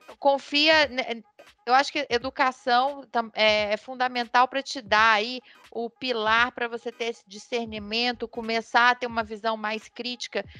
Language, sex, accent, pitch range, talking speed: Portuguese, female, Brazilian, 225-265 Hz, 140 wpm